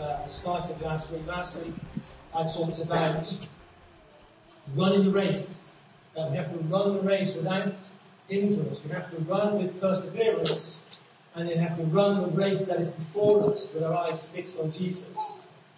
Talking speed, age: 165 wpm, 40-59